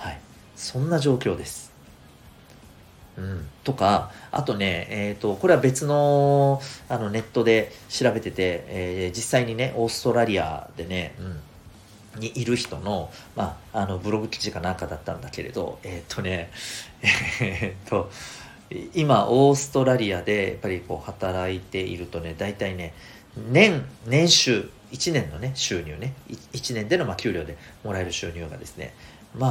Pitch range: 90-130 Hz